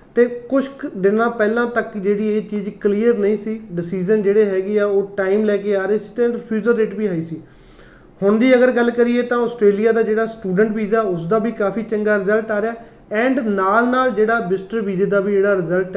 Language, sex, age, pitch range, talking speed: Punjabi, male, 20-39, 200-230 Hz, 215 wpm